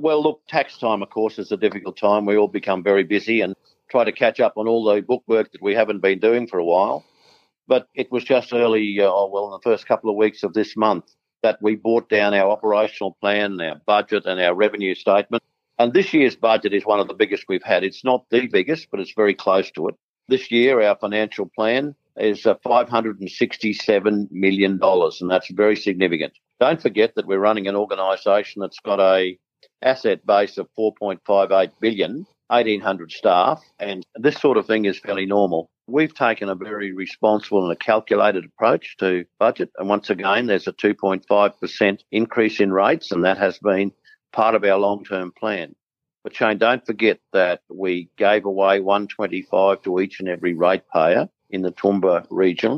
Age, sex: 50-69, male